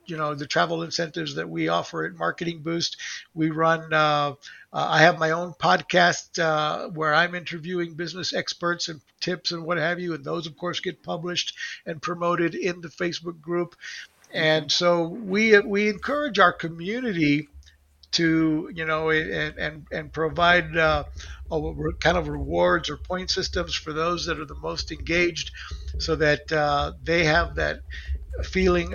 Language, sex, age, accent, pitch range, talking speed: English, male, 60-79, American, 155-175 Hz, 165 wpm